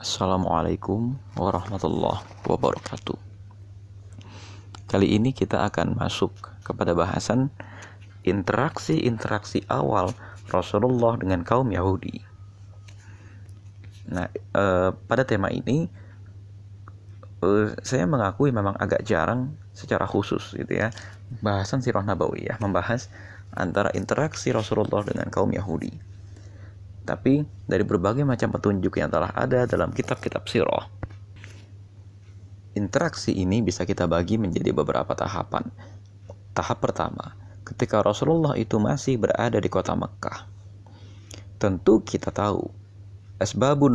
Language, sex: Indonesian, male